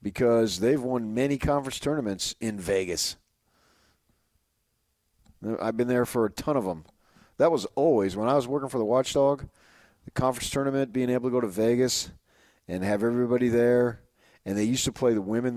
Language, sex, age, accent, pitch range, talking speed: English, male, 40-59, American, 95-115 Hz, 175 wpm